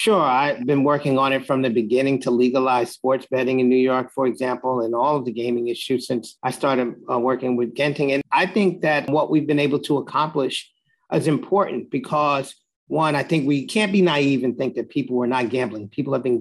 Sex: male